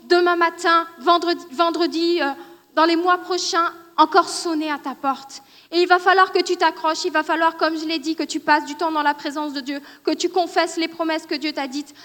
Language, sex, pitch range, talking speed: French, female, 320-365 Hz, 235 wpm